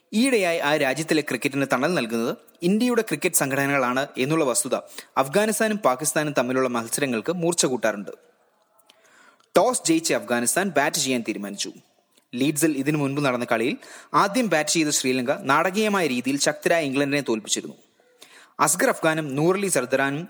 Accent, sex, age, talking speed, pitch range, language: Indian, male, 20-39, 65 wpm, 135-190 Hz, English